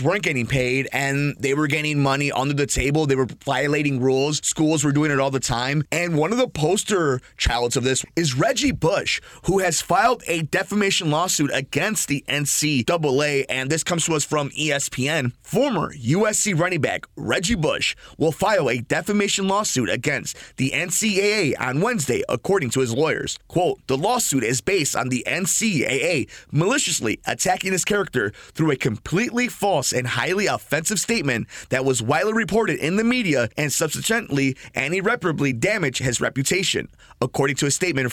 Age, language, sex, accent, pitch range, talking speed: 30-49, English, male, American, 130-180 Hz, 170 wpm